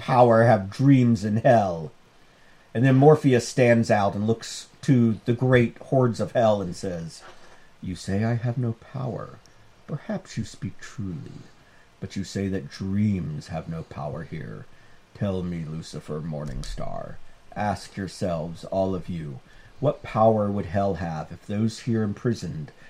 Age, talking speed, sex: 50-69, 150 wpm, male